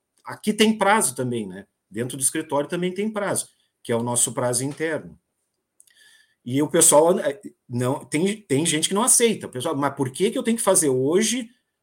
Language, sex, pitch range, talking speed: Portuguese, male, 130-195 Hz, 195 wpm